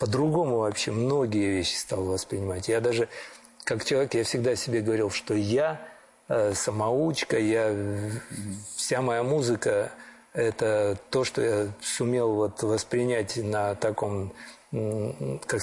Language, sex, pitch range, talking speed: Russian, male, 105-125 Hz, 125 wpm